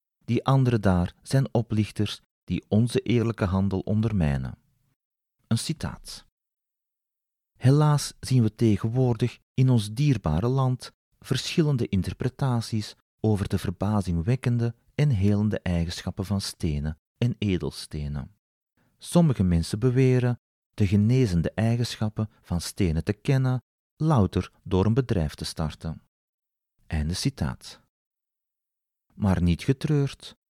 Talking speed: 105 wpm